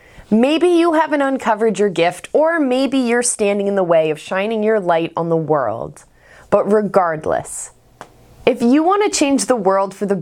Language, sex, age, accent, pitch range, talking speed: English, female, 20-39, American, 195-290 Hz, 180 wpm